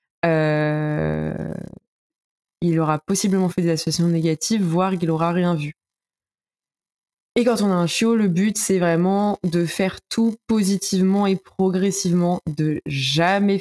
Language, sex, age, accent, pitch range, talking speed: French, female, 20-39, French, 160-190 Hz, 135 wpm